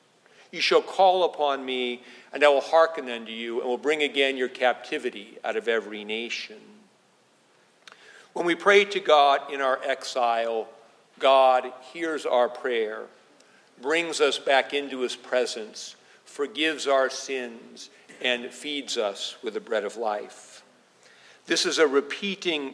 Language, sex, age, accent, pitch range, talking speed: English, male, 50-69, American, 120-160 Hz, 145 wpm